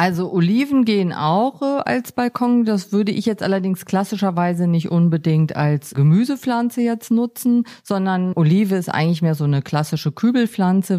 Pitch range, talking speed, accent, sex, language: 165-210 Hz, 145 wpm, German, female, German